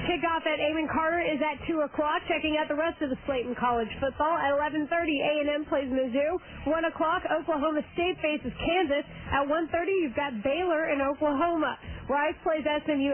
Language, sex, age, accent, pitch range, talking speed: English, female, 40-59, American, 275-330 Hz, 180 wpm